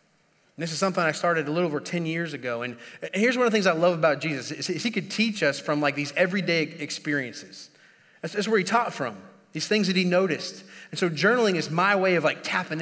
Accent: American